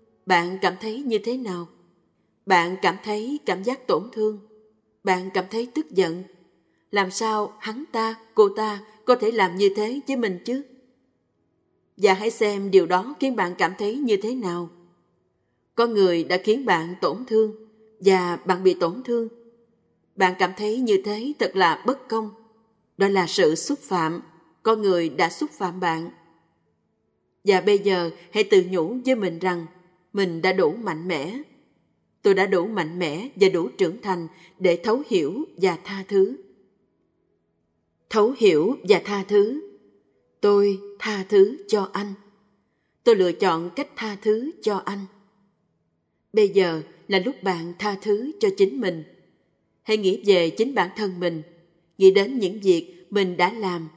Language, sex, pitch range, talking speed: Vietnamese, female, 180-225 Hz, 165 wpm